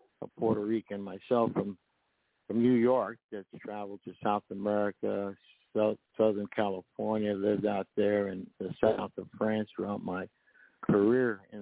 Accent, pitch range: American, 100-115 Hz